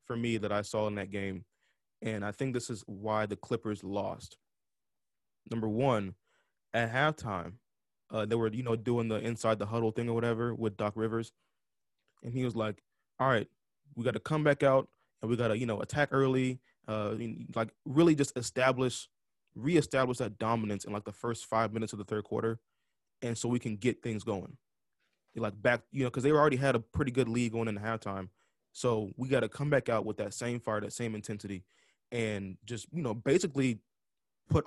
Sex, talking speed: male, 205 wpm